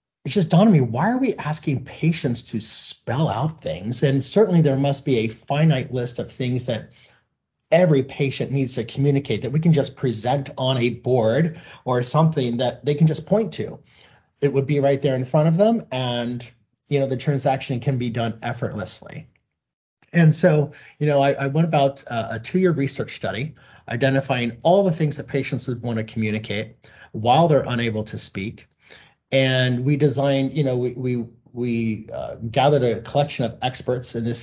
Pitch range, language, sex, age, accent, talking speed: 120-140 Hz, English, male, 30-49, American, 190 wpm